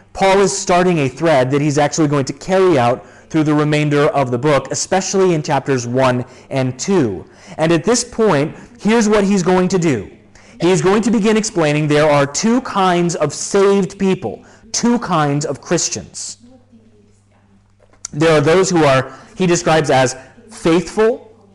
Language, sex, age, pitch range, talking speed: Italian, male, 30-49, 130-185 Hz, 165 wpm